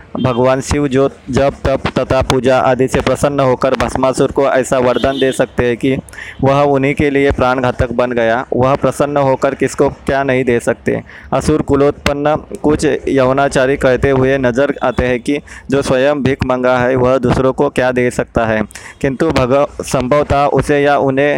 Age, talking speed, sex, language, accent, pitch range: 20-39, 175 wpm, male, Hindi, native, 130-140 Hz